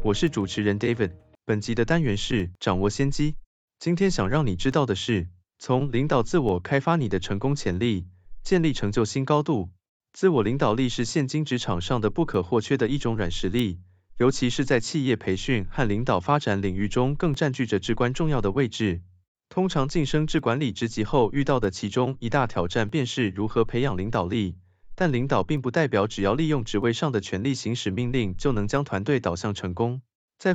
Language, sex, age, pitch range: Chinese, male, 20-39, 100-140 Hz